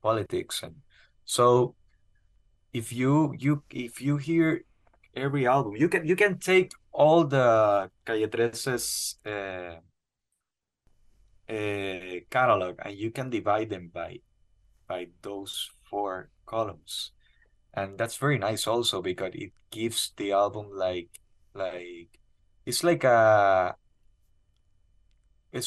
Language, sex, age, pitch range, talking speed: English, male, 20-39, 90-130 Hz, 110 wpm